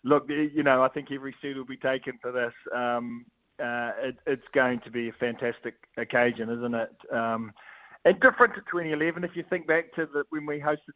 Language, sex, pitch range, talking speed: English, male, 125-150 Hz, 195 wpm